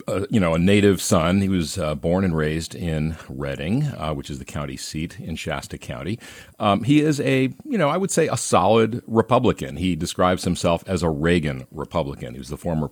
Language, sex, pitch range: English, male, 75-100 Hz